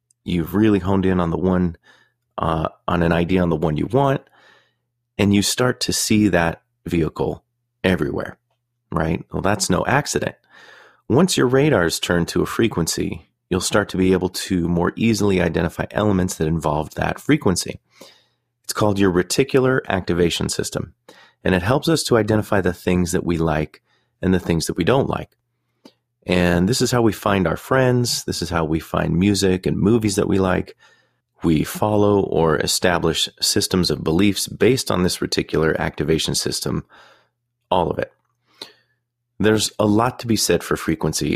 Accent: American